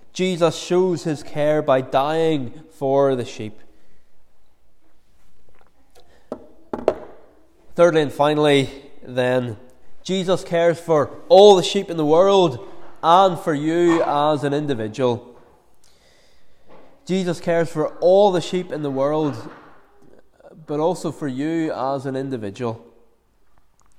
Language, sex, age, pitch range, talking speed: English, male, 20-39, 140-175 Hz, 110 wpm